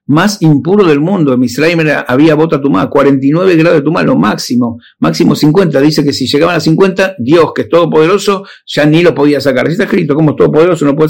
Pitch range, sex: 150-200 Hz, male